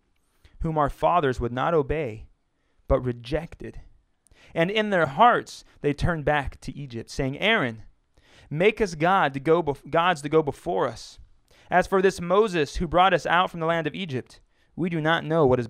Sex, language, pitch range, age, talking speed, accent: male, English, 115-160 Hz, 30-49, 170 wpm, American